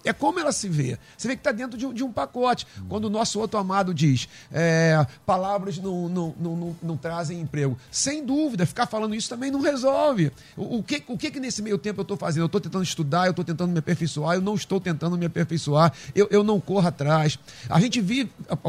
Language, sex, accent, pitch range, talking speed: Portuguese, male, Brazilian, 160-225 Hz, 210 wpm